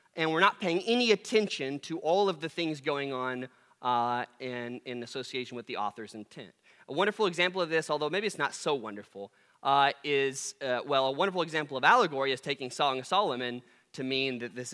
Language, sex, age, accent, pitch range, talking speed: English, male, 20-39, American, 125-195 Hz, 205 wpm